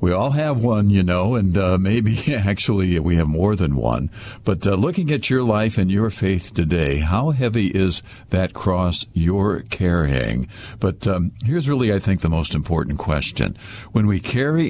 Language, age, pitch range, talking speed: English, 60-79, 90-120 Hz, 185 wpm